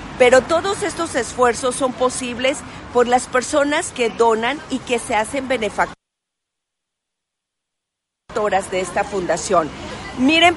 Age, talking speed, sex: 40-59, 115 wpm, female